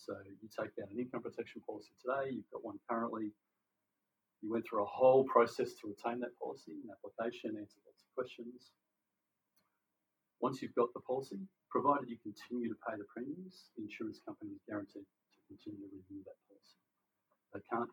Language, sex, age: English, male, 40-59